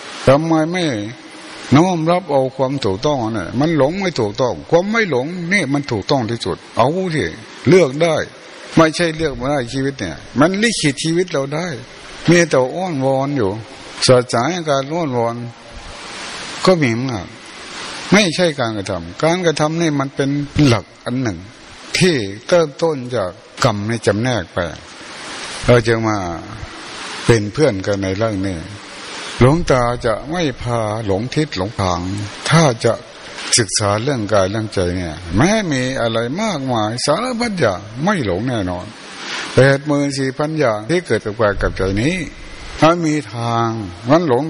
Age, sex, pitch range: 60-79, male, 110-155 Hz